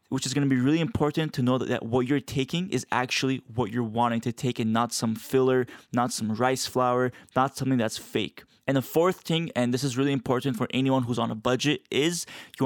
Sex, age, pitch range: male, 20-39, 125-155 Hz